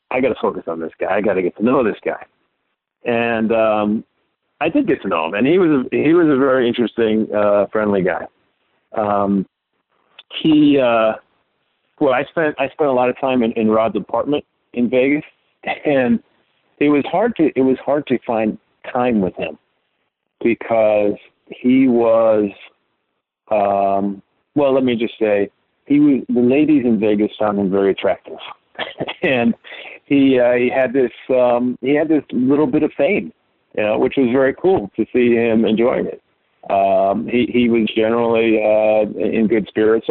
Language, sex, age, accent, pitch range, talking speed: English, male, 50-69, American, 105-130 Hz, 180 wpm